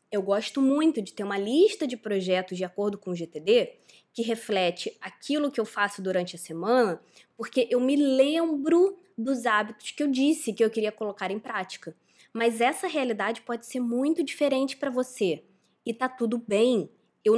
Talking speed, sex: 180 wpm, female